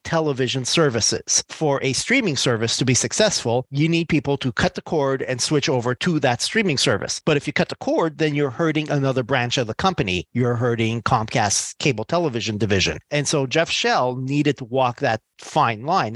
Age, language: 40-59, English